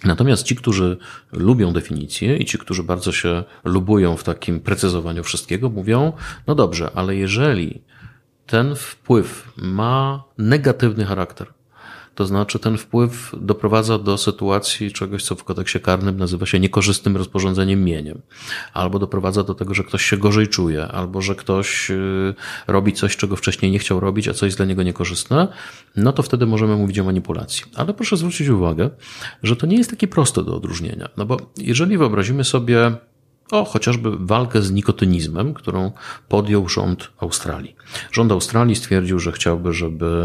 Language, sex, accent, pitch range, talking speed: Polish, male, native, 90-120 Hz, 160 wpm